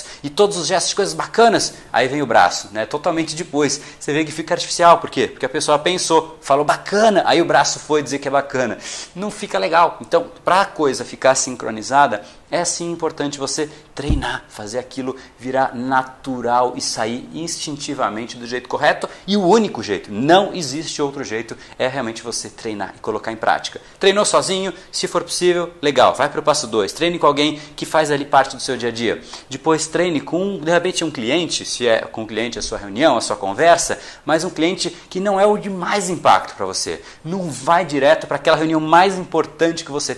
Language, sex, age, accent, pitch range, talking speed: Portuguese, male, 40-59, Brazilian, 140-175 Hz, 205 wpm